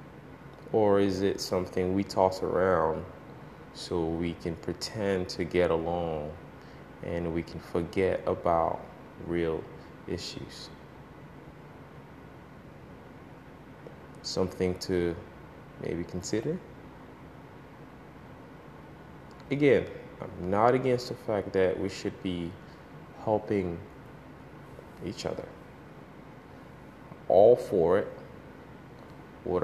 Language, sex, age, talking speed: English, male, 20-39, 85 wpm